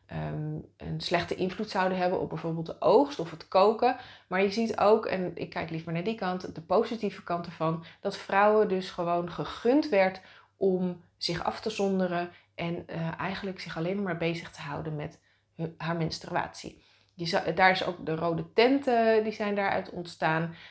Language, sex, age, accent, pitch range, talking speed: Dutch, female, 20-39, Dutch, 165-215 Hz, 175 wpm